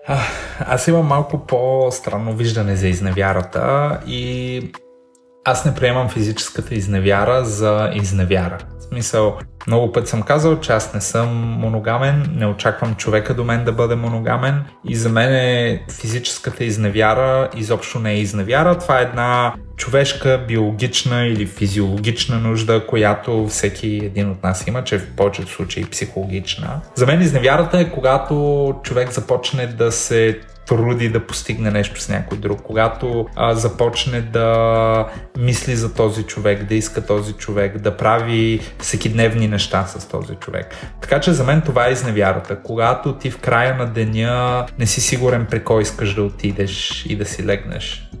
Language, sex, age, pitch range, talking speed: Bulgarian, male, 20-39, 105-125 Hz, 155 wpm